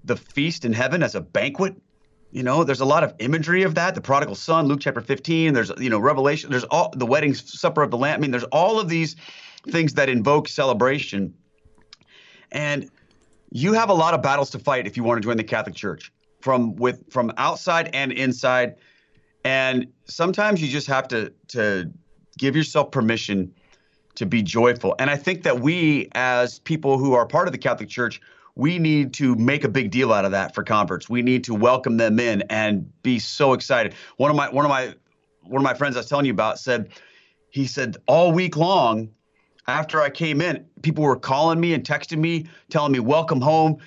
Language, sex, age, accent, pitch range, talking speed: English, male, 30-49, American, 125-160 Hz, 210 wpm